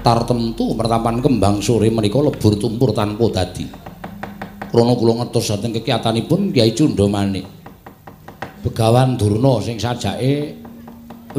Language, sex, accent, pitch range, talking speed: Indonesian, male, native, 110-135 Hz, 115 wpm